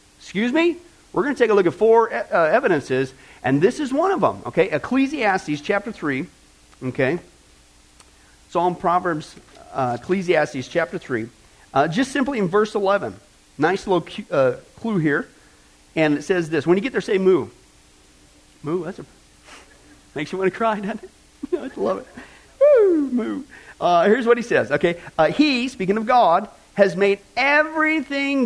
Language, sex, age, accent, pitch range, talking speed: English, male, 40-59, American, 180-275 Hz, 165 wpm